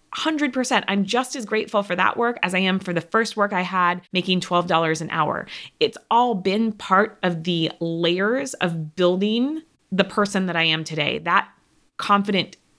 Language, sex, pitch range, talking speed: English, female, 170-220 Hz, 175 wpm